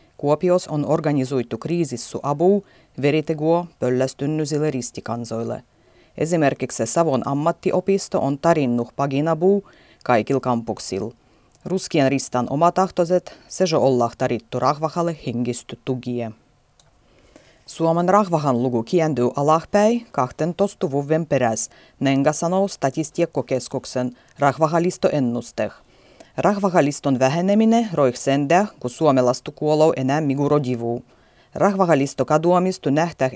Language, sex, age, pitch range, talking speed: Finnish, female, 30-49, 125-170 Hz, 90 wpm